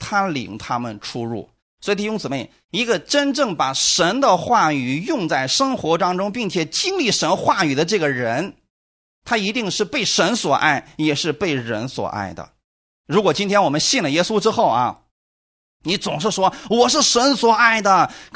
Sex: male